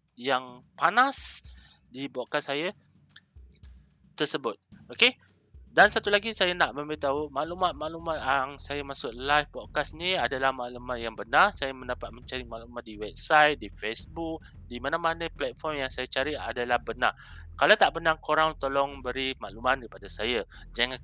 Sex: male